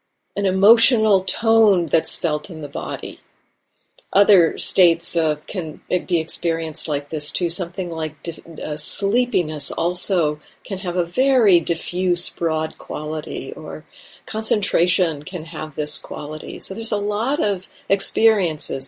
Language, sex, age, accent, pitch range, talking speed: English, female, 50-69, American, 165-205 Hz, 130 wpm